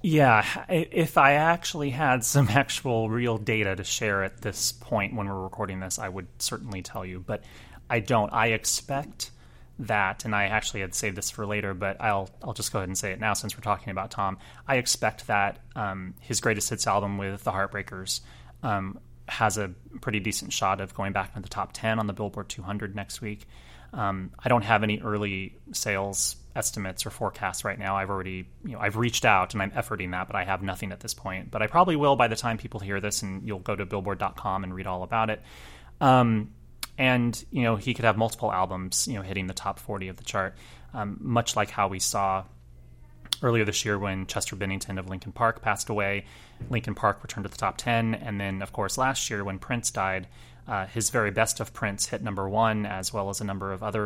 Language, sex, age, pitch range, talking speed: English, male, 30-49, 95-115 Hz, 220 wpm